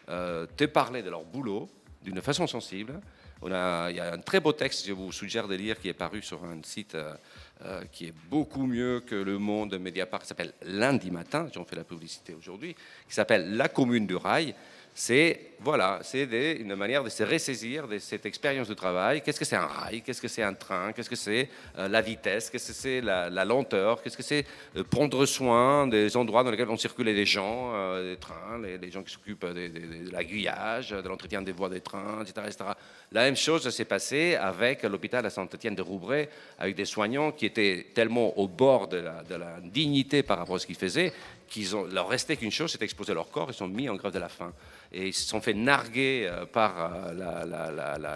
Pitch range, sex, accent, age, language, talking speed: 90-120 Hz, male, French, 40-59, French, 230 wpm